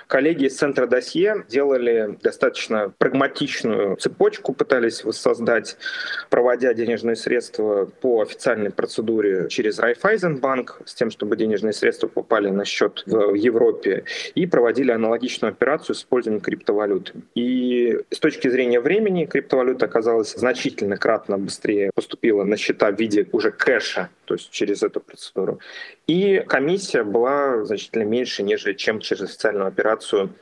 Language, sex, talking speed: Russian, male, 130 wpm